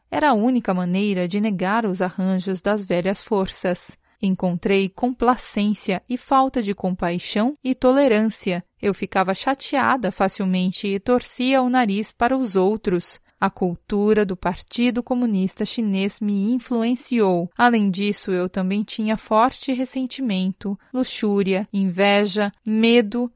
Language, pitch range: Portuguese, 195-240 Hz